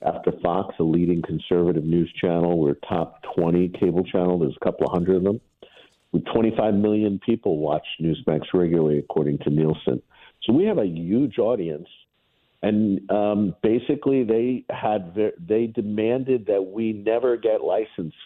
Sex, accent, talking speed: male, American, 155 wpm